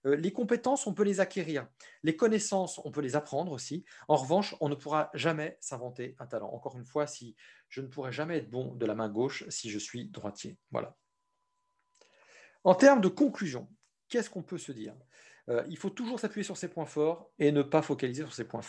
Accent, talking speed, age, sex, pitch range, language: French, 210 wpm, 40-59, male, 135-185 Hz, French